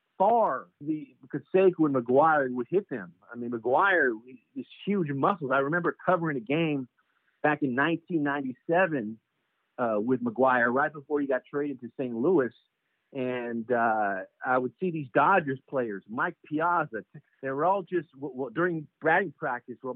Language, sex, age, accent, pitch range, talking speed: English, male, 50-69, American, 125-170 Hz, 160 wpm